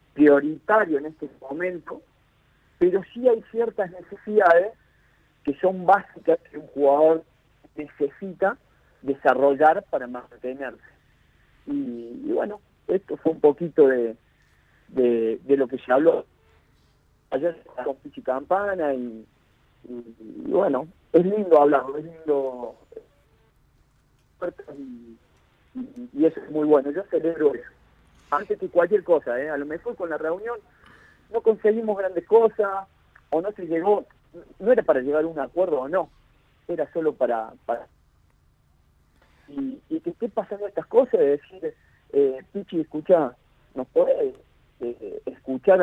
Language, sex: Spanish, male